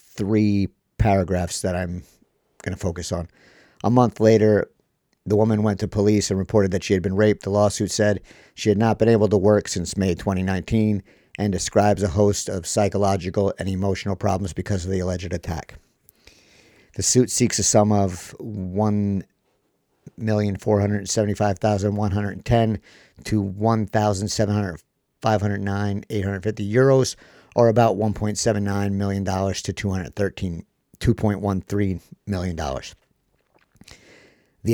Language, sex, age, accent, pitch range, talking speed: English, male, 50-69, American, 95-105 Hz, 140 wpm